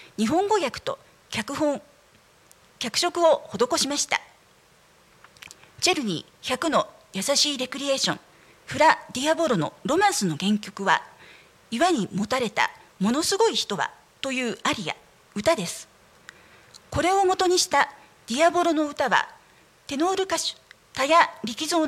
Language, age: Japanese, 40-59